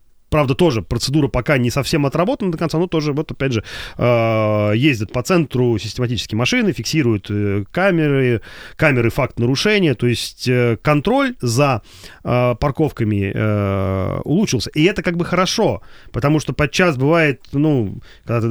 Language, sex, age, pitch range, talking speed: Russian, male, 30-49, 105-145 Hz, 135 wpm